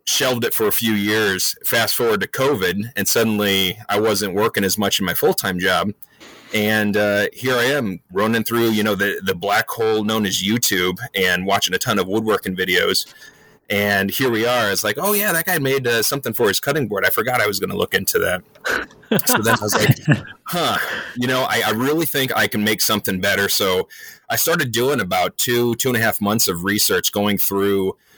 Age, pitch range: 30-49, 95-110 Hz